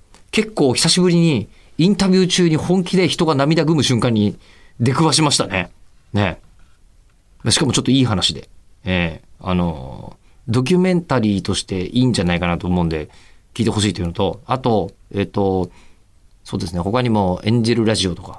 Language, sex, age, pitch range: Japanese, male, 40-59, 95-150 Hz